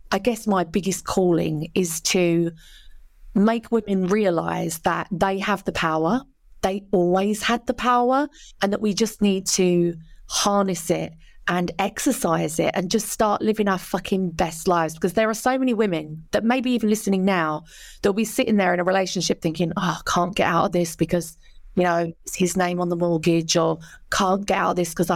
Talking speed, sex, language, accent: 195 wpm, female, English, British